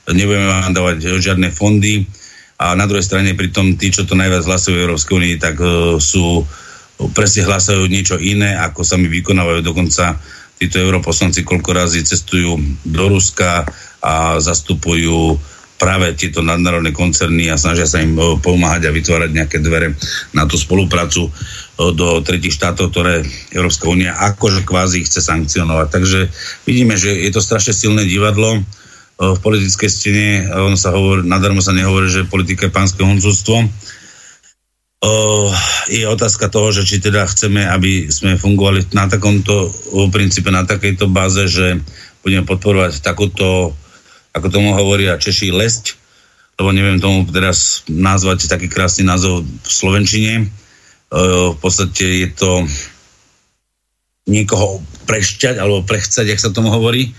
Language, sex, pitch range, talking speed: Slovak, male, 85-100 Hz, 140 wpm